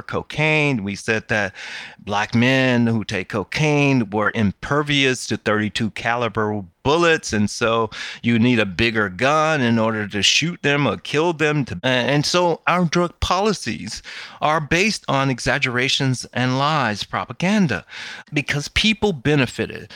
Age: 30-49